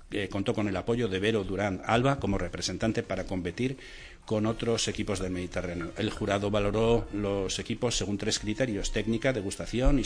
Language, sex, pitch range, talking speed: Spanish, male, 95-120 Hz, 175 wpm